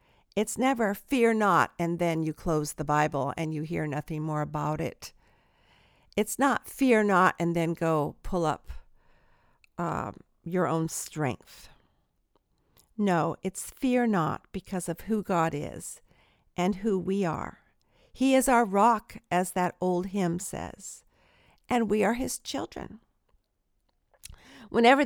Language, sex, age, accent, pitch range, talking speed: English, female, 50-69, American, 165-235 Hz, 140 wpm